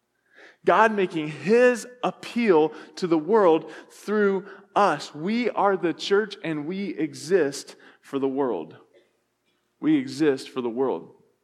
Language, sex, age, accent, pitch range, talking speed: English, male, 20-39, American, 145-200 Hz, 125 wpm